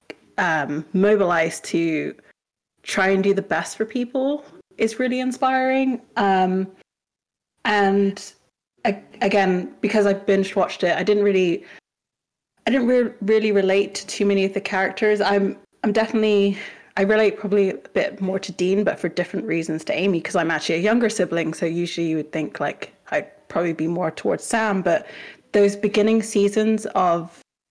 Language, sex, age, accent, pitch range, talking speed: English, female, 20-39, British, 190-215 Hz, 165 wpm